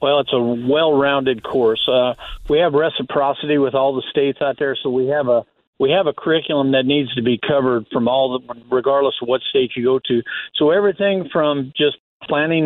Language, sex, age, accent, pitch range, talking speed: English, male, 50-69, American, 125-145 Hz, 205 wpm